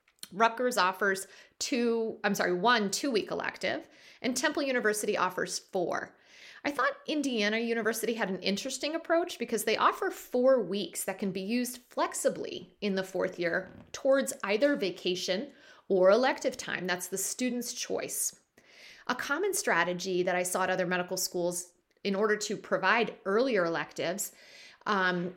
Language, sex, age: English, female, 30-49